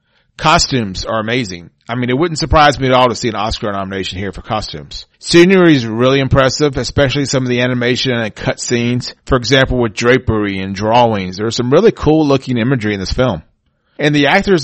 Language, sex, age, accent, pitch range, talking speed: English, male, 40-59, American, 115-145 Hz, 195 wpm